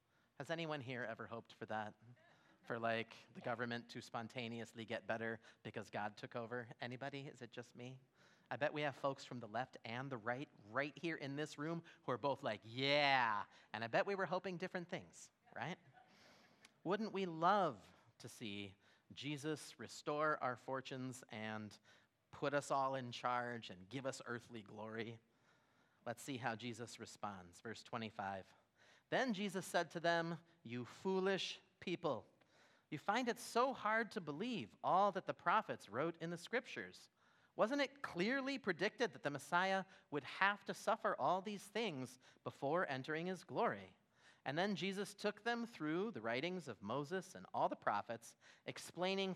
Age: 30-49